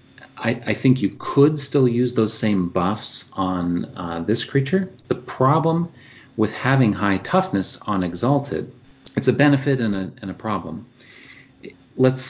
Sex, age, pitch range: male, 30-49, 95-125 Hz